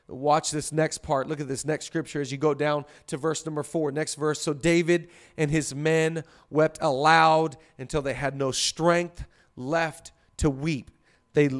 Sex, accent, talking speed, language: male, American, 180 wpm, English